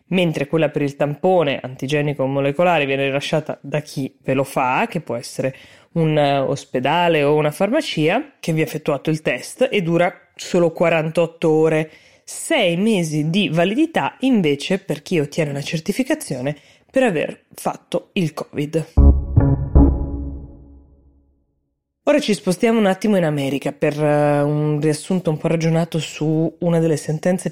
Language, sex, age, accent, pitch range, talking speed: Italian, female, 20-39, native, 150-180 Hz, 145 wpm